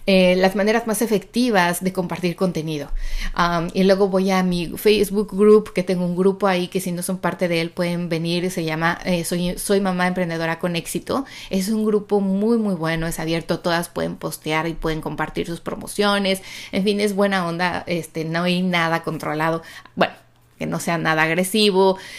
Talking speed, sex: 190 wpm, female